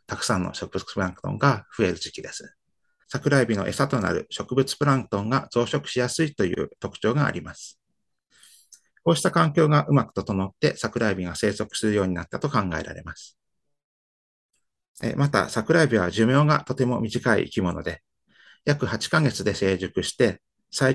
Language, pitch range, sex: Japanese, 100-140 Hz, male